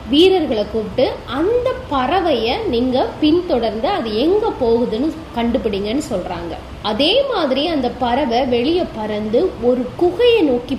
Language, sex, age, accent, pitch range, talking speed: Tamil, female, 20-39, native, 225-315 Hz, 55 wpm